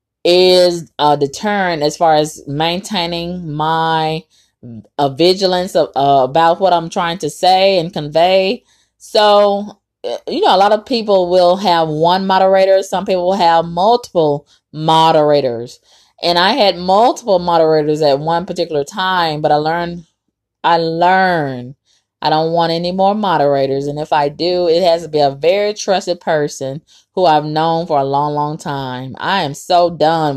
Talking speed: 165 wpm